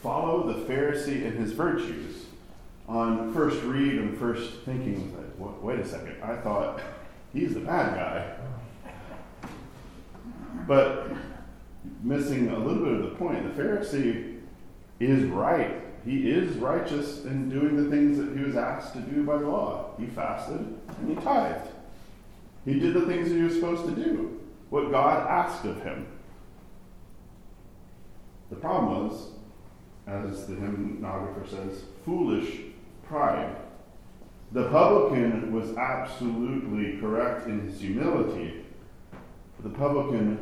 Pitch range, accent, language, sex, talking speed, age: 100-135 Hz, American, English, male, 130 wpm, 40-59